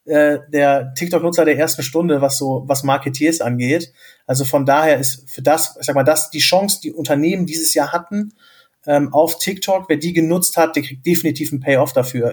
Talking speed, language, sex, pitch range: 195 wpm, German, male, 140-160 Hz